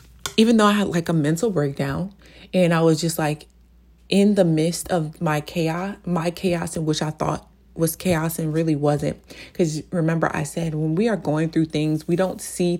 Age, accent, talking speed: 20-39, American, 200 wpm